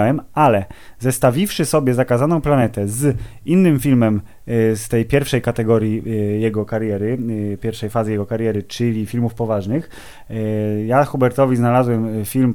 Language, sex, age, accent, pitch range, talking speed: Polish, male, 20-39, native, 115-135 Hz, 120 wpm